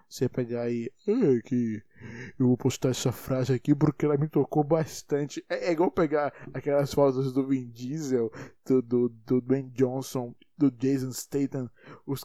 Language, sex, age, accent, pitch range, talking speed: Portuguese, male, 20-39, Brazilian, 125-150 Hz, 165 wpm